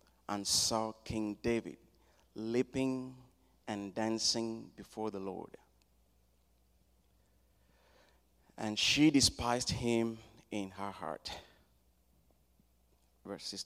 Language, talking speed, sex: English, 80 wpm, male